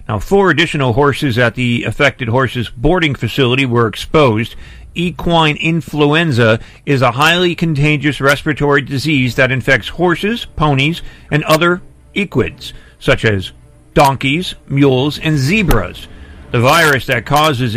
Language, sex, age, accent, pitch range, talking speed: English, male, 50-69, American, 125-165 Hz, 125 wpm